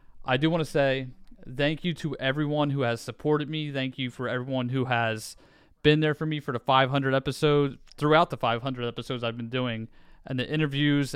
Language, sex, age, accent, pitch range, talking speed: English, male, 30-49, American, 125-155 Hz, 200 wpm